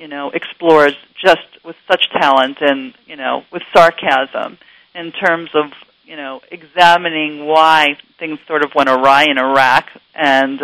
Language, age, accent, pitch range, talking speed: English, 40-59, American, 140-170 Hz, 150 wpm